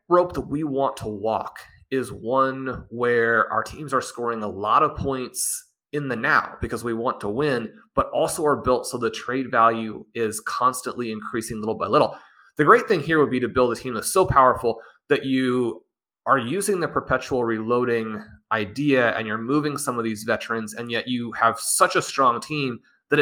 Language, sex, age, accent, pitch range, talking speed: English, male, 30-49, American, 110-135 Hz, 195 wpm